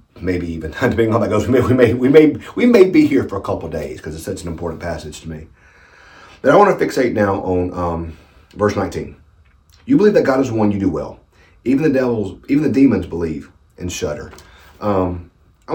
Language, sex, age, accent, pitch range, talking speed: English, male, 40-59, American, 85-120 Hz, 220 wpm